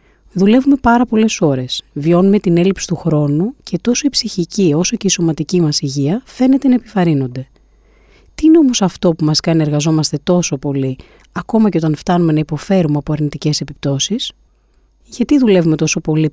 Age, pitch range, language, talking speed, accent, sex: 30-49, 150-210 Hz, Greek, 165 wpm, native, female